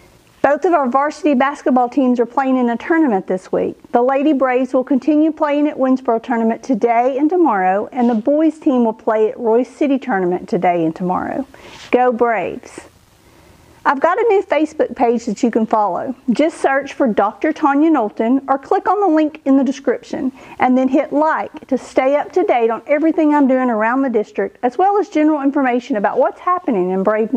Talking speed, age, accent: 195 wpm, 50-69, American